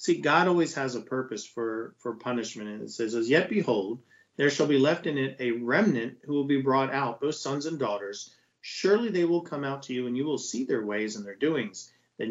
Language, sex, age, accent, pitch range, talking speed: English, male, 40-59, American, 120-150 Hz, 240 wpm